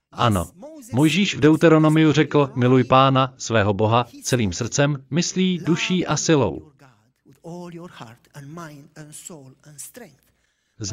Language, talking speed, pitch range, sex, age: Slovak, 95 wpm, 120-170 Hz, male, 40-59